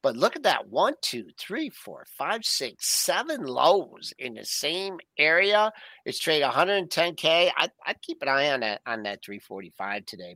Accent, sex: American, male